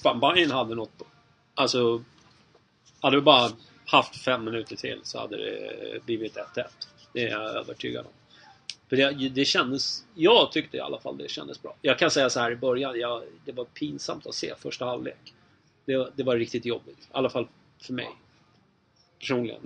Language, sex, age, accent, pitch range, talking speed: English, male, 30-49, Swedish, 120-140 Hz, 185 wpm